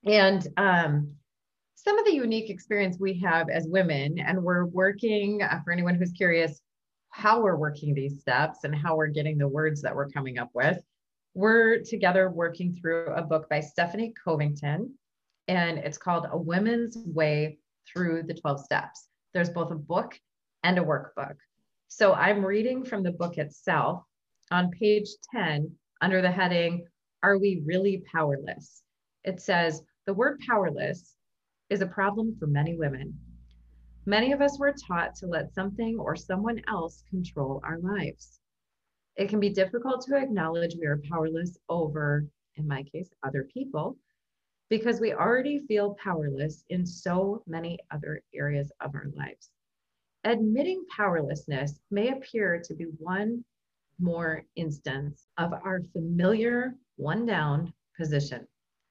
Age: 30-49